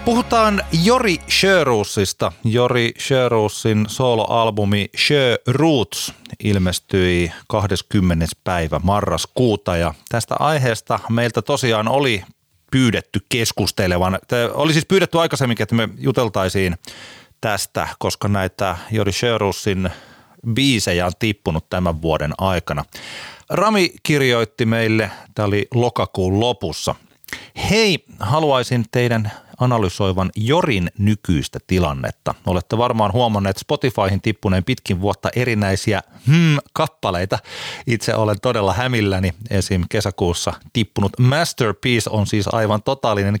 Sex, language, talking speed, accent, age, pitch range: male, Finnish, 100 wpm, native, 30-49, 95-125 Hz